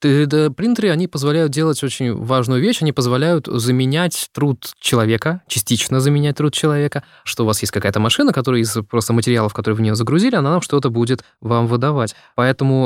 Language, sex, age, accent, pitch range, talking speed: Russian, male, 20-39, native, 115-145 Hz, 175 wpm